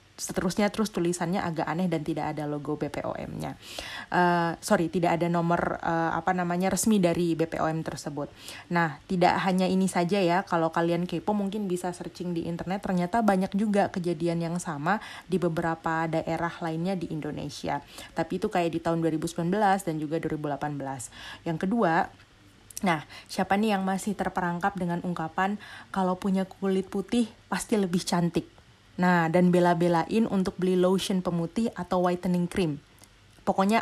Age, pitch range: 30-49, 170-195 Hz